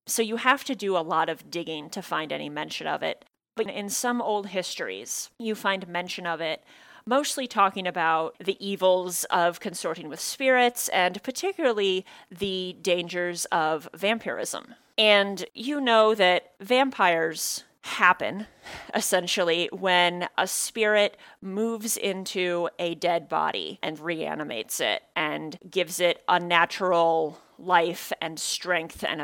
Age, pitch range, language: 30-49, 175-225 Hz, English